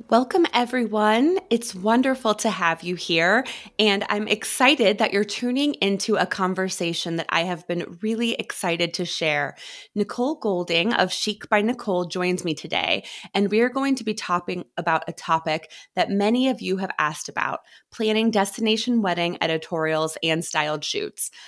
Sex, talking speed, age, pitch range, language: female, 160 wpm, 20-39, 165-215 Hz, English